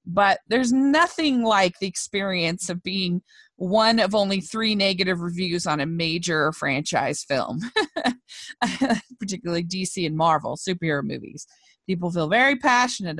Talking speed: 130 wpm